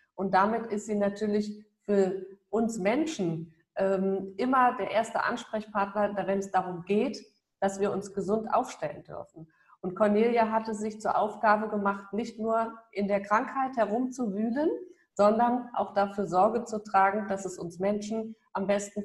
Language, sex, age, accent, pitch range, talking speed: German, female, 50-69, German, 195-235 Hz, 150 wpm